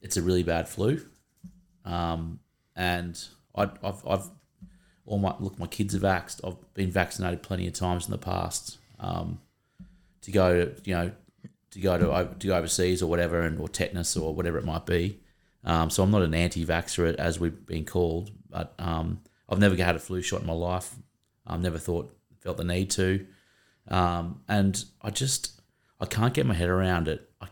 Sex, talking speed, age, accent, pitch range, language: male, 190 wpm, 30-49, Australian, 85-100 Hz, English